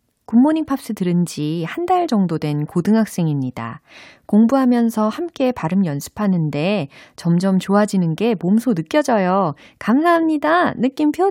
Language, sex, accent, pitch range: Korean, female, native, 155-240 Hz